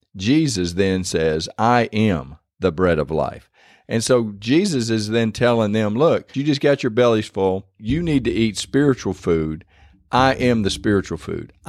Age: 50-69